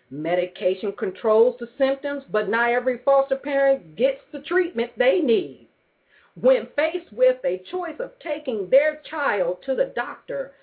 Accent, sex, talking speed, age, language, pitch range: American, female, 145 wpm, 50-69, English, 200-280 Hz